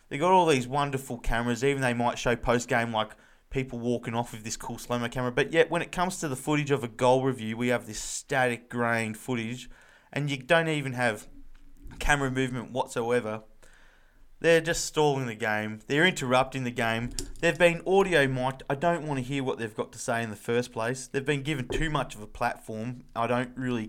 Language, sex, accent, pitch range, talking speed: English, male, Australian, 120-150 Hz, 210 wpm